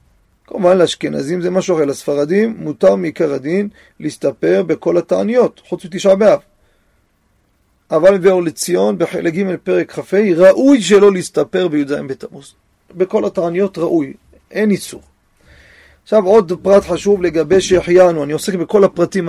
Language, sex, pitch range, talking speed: Hebrew, male, 155-195 Hz, 130 wpm